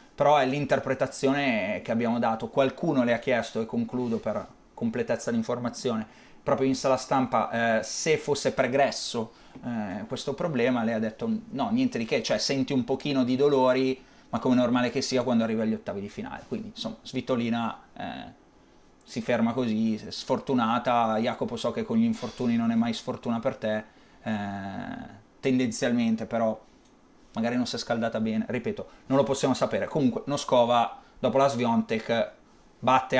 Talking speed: 165 wpm